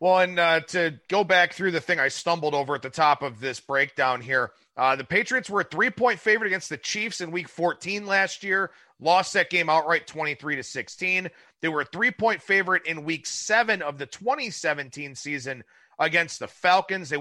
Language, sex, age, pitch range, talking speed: English, male, 30-49, 155-210 Hz, 195 wpm